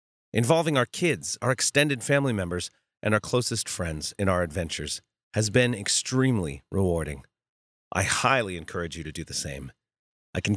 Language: English